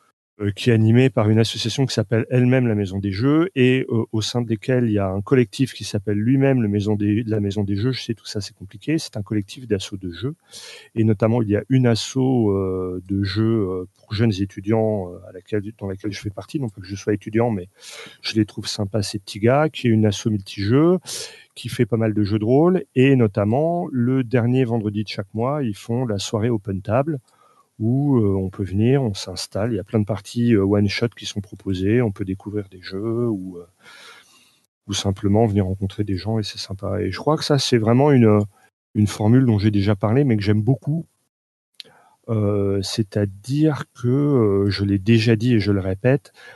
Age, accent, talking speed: 40-59, French, 220 wpm